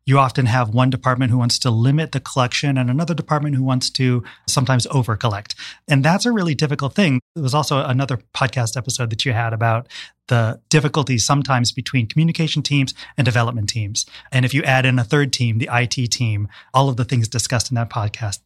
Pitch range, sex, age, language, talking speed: 120-155 Hz, male, 30-49, English, 210 wpm